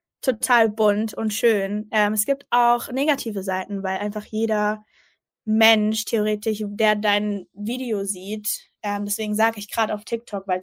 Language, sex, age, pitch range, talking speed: German, female, 20-39, 205-240 Hz, 150 wpm